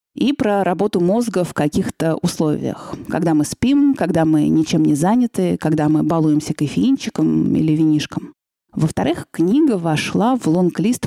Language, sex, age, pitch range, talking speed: Russian, female, 30-49, 155-230 Hz, 140 wpm